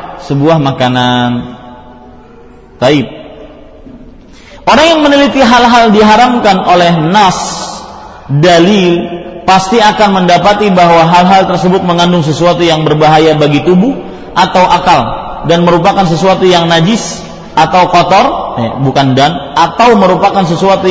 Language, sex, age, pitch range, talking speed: Malay, male, 40-59, 170-210 Hz, 110 wpm